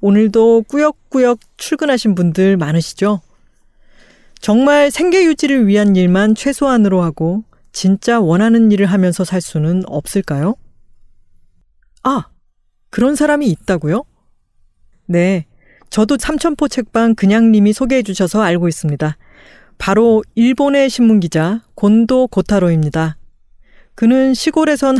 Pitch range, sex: 175-245 Hz, female